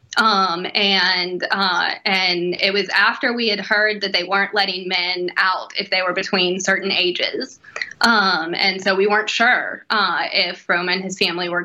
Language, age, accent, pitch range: English, 10-29, American, 180-200 Hz